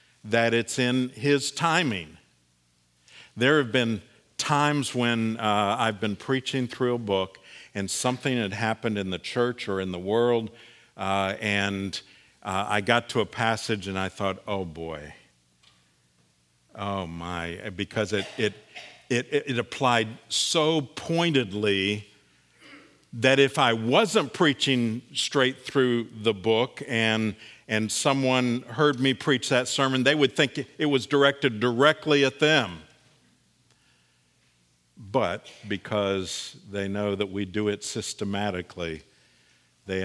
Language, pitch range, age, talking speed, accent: English, 95-125 Hz, 50-69, 130 wpm, American